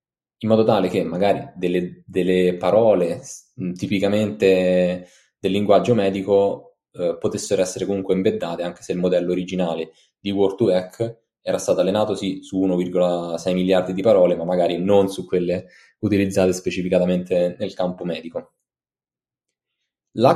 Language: Italian